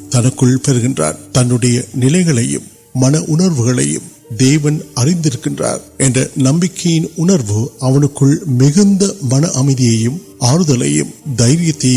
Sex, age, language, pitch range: male, 50-69, Urdu, 120-150 Hz